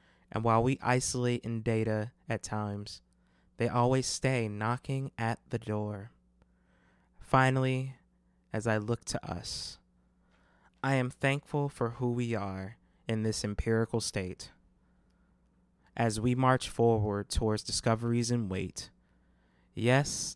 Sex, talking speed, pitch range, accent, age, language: male, 120 wpm, 100-130 Hz, American, 20-39, English